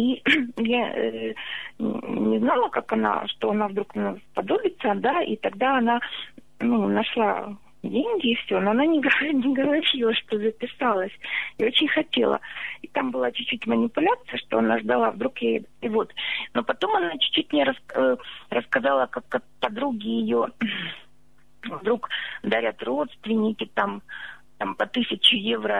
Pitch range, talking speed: 210-260 Hz, 135 wpm